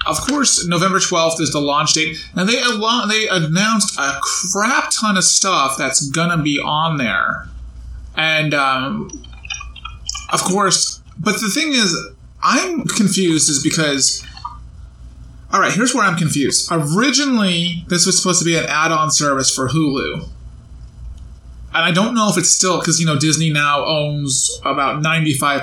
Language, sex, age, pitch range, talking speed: English, male, 20-39, 140-175 Hz, 160 wpm